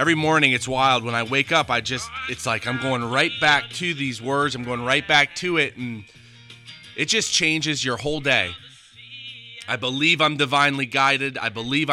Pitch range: 115-145 Hz